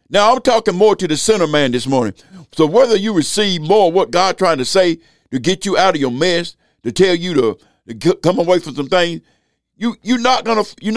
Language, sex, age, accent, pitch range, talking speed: English, male, 60-79, American, 160-225 Hz, 225 wpm